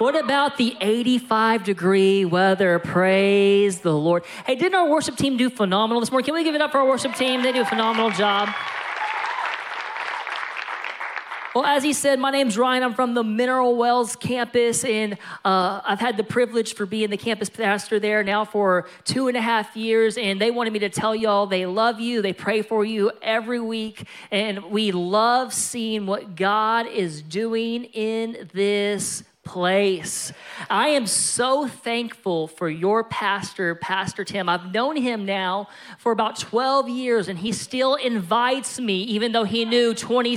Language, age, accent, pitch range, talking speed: English, 40-59, American, 200-240 Hz, 175 wpm